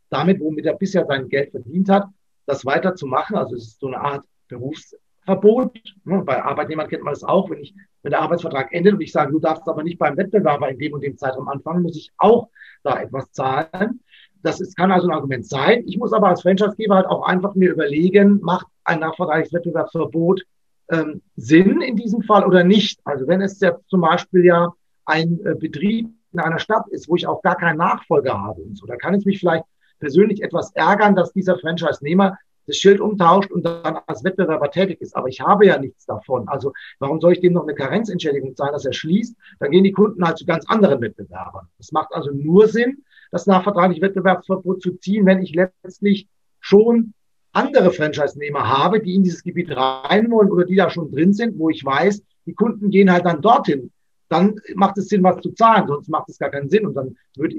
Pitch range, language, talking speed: 155-195 Hz, German, 210 wpm